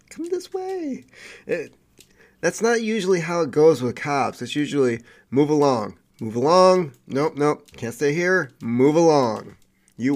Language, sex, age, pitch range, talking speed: English, male, 30-49, 120-165 Hz, 155 wpm